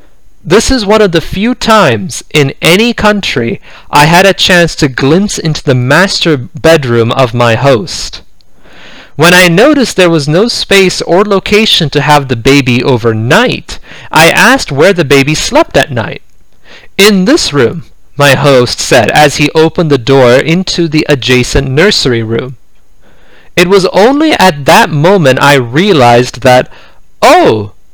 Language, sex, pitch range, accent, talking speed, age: English, male, 130-195 Hz, American, 150 wpm, 30-49